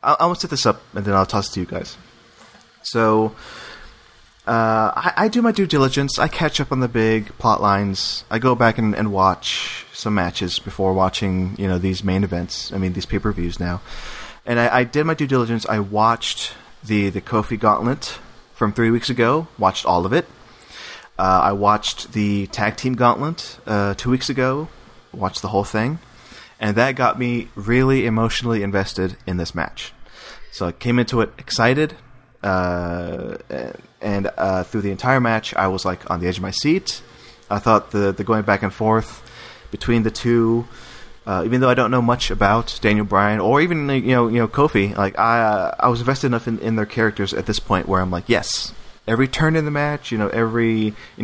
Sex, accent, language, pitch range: male, American, English, 100-125 Hz